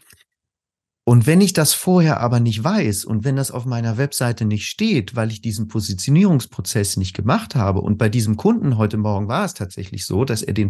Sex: male